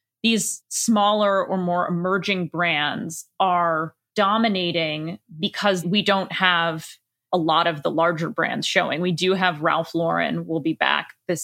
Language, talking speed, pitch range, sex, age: English, 145 wpm, 170-225 Hz, female, 20-39